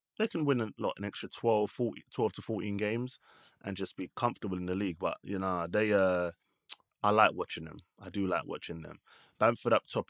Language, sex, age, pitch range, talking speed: English, male, 20-39, 85-105 Hz, 220 wpm